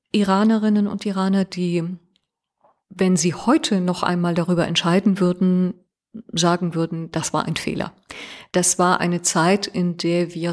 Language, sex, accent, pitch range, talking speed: German, female, German, 165-190 Hz, 140 wpm